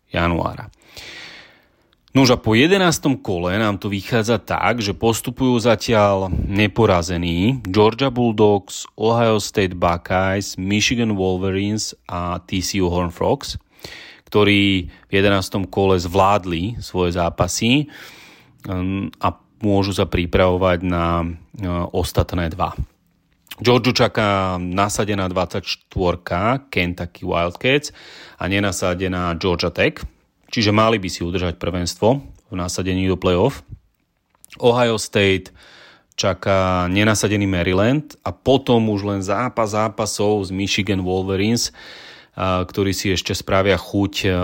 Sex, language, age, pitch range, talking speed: male, Slovak, 30-49, 90-110 Hz, 105 wpm